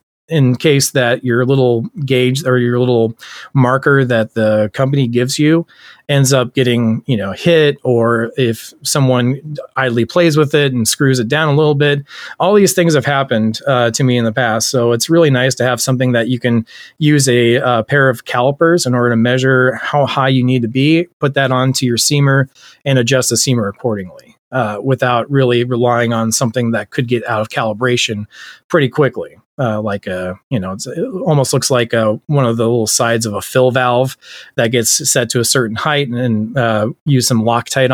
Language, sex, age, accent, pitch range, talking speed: English, male, 30-49, American, 115-135 Hz, 200 wpm